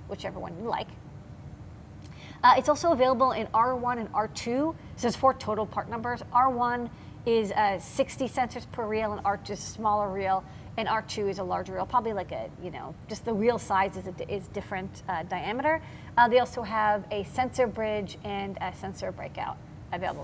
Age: 40-59